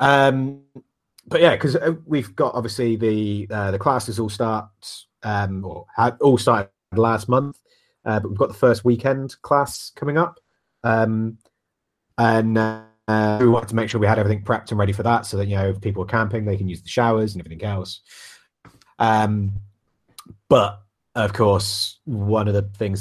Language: English